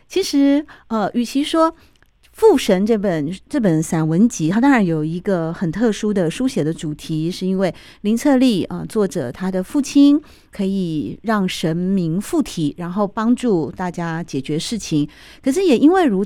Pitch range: 170-230 Hz